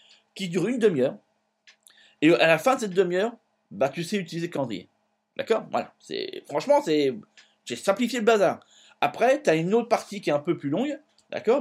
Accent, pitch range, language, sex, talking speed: French, 155-225 Hz, French, male, 195 wpm